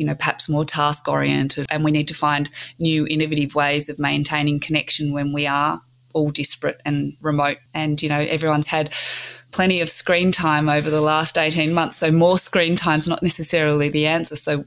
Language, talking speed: English, 190 wpm